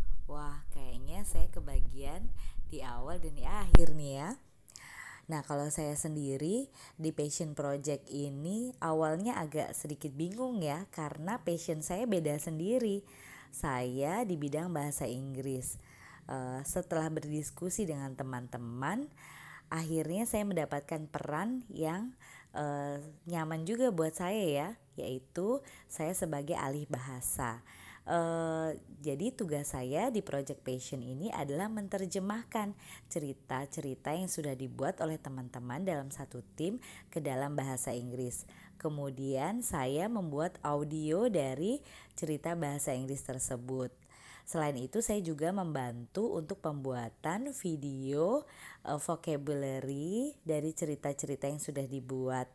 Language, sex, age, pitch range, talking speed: Indonesian, female, 20-39, 135-175 Hz, 115 wpm